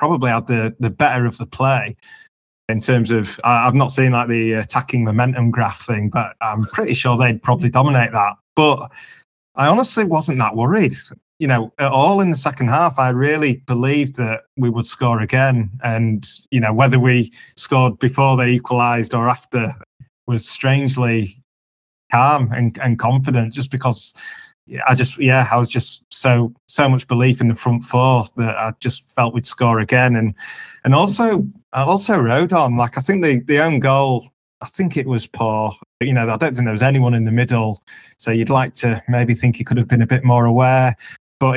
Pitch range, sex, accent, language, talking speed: 115-130 Hz, male, British, English, 200 wpm